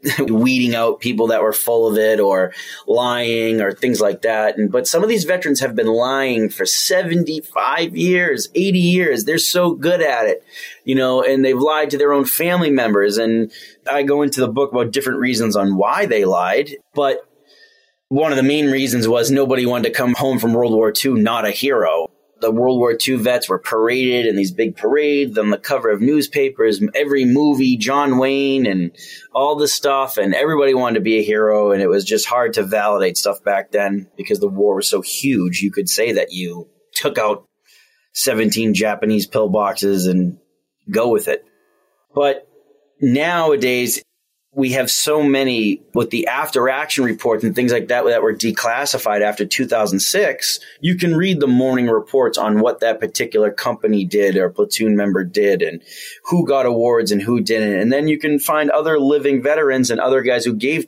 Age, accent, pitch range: 30-49, American, 110-150 Hz